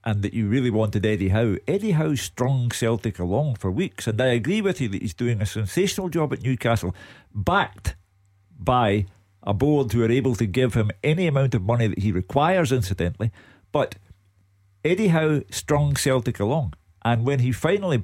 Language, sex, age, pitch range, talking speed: English, male, 50-69, 100-135 Hz, 185 wpm